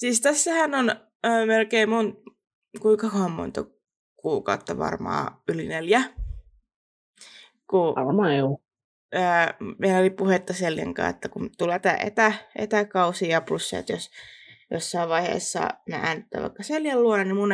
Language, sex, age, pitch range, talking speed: Finnish, female, 20-39, 170-230 Hz, 125 wpm